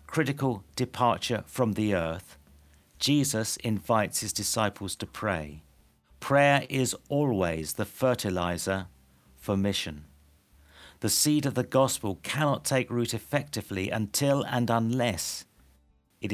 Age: 50-69